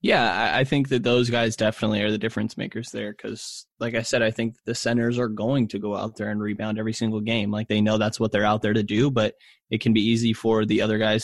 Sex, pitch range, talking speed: male, 110-125 Hz, 265 wpm